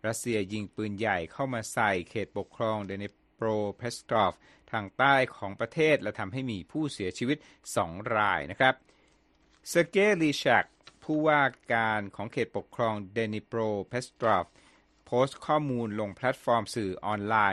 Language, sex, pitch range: Thai, male, 105-130 Hz